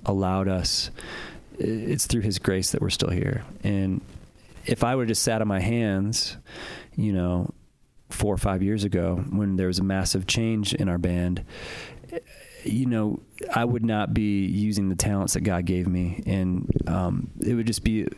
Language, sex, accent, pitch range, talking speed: English, male, American, 95-110 Hz, 180 wpm